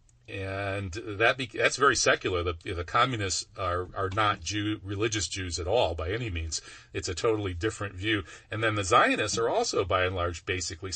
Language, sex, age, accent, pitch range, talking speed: English, male, 40-59, American, 95-110 Hz, 185 wpm